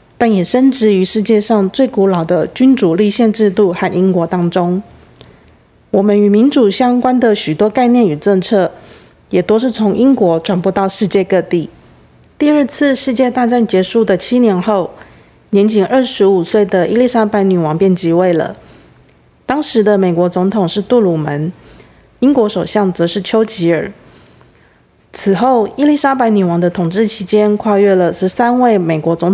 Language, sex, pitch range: Japanese, female, 185-235 Hz